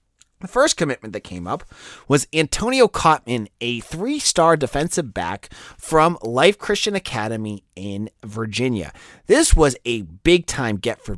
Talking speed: 135 wpm